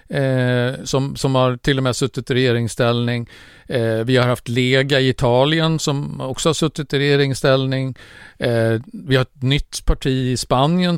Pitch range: 120-140 Hz